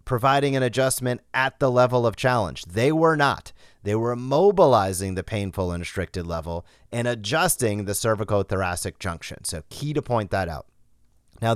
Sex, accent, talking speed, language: male, American, 165 wpm, English